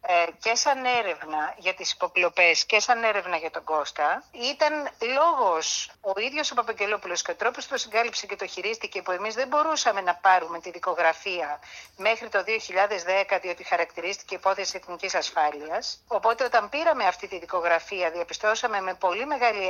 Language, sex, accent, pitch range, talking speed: Greek, female, native, 185-260 Hz, 160 wpm